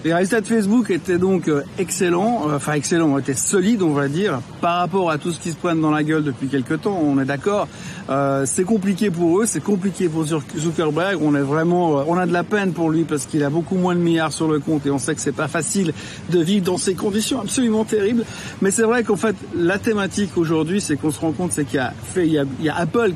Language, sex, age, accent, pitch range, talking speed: French, male, 50-69, French, 145-195 Hz, 260 wpm